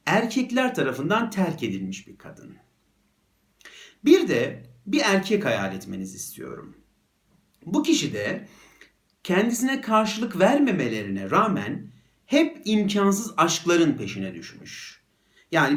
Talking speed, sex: 100 wpm, male